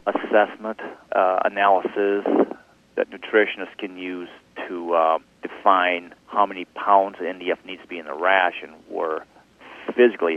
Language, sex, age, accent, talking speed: English, male, 40-59, American, 135 wpm